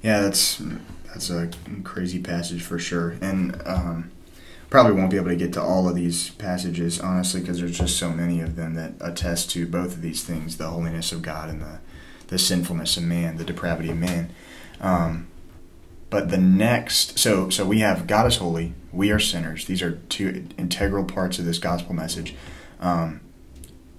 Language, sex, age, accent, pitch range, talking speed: English, male, 20-39, American, 85-95 Hz, 185 wpm